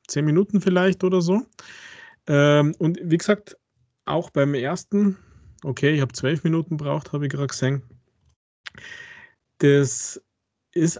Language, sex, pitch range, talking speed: German, male, 125-150 Hz, 125 wpm